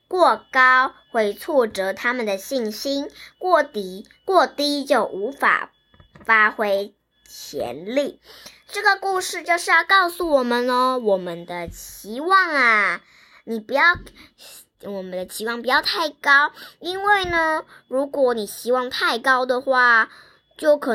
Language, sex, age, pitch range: Chinese, male, 20-39, 225-320 Hz